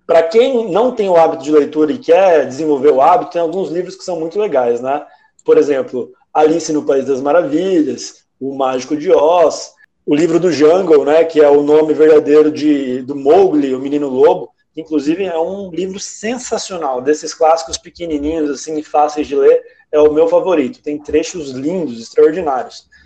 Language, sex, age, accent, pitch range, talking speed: Portuguese, male, 20-39, Brazilian, 165-240 Hz, 180 wpm